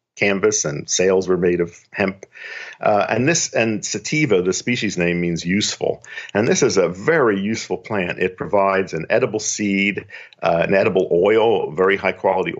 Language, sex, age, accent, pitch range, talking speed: English, male, 50-69, American, 95-130 Hz, 170 wpm